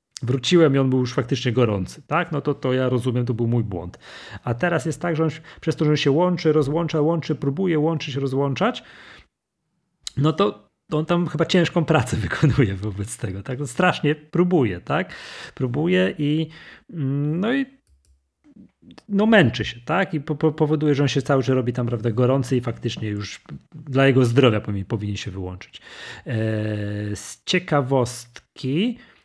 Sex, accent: male, native